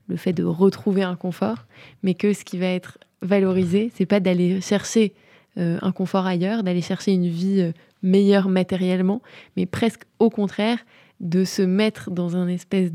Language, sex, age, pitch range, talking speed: French, female, 20-39, 175-200 Hz, 170 wpm